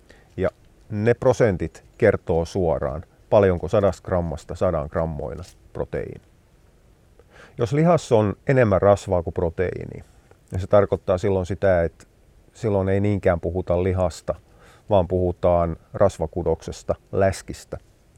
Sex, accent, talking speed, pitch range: male, native, 105 wpm, 90-105 Hz